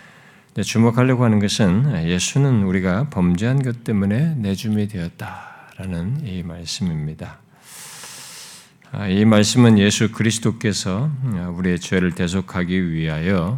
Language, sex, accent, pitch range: Korean, male, native, 90-135 Hz